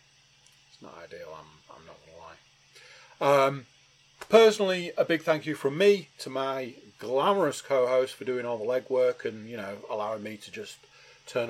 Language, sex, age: English, male, 30-49